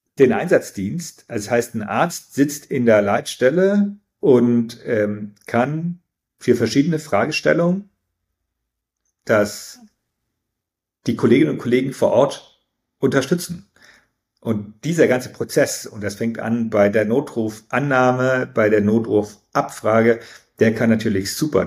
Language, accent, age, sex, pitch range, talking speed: German, German, 40-59, male, 100-120 Hz, 115 wpm